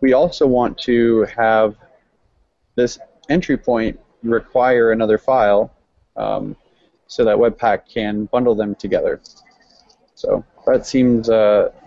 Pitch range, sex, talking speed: 110-125 Hz, male, 115 wpm